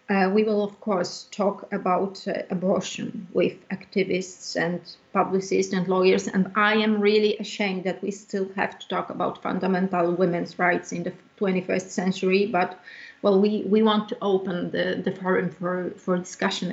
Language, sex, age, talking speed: English, female, 30-49, 170 wpm